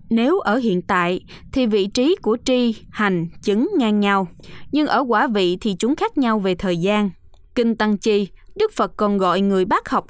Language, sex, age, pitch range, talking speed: Vietnamese, female, 20-39, 195-260 Hz, 200 wpm